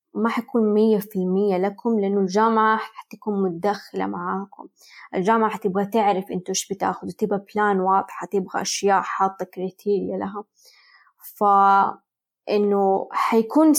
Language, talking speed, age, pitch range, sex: Arabic, 130 wpm, 20-39, 190-225 Hz, female